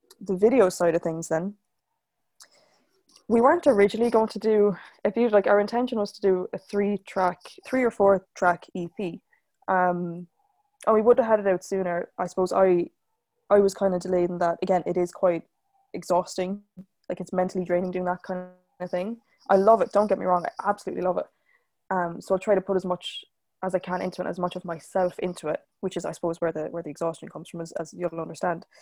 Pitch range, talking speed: 175-215 Hz, 220 wpm